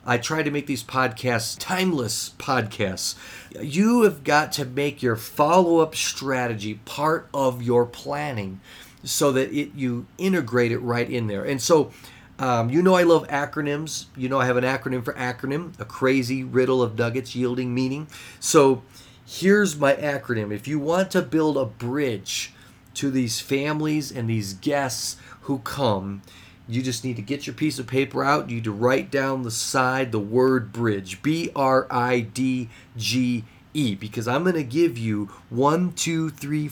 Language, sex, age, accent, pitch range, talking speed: English, male, 40-59, American, 115-145 Hz, 165 wpm